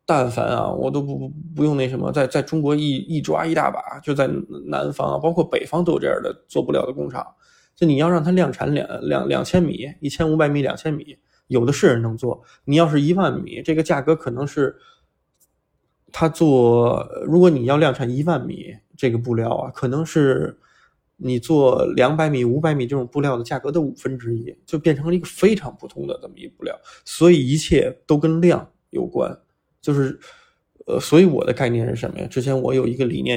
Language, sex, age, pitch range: Chinese, male, 20-39, 130-170 Hz